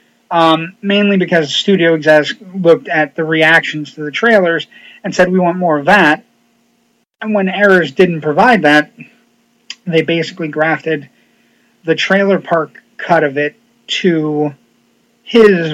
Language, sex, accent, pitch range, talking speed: English, male, American, 150-185 Hz, 135 wpm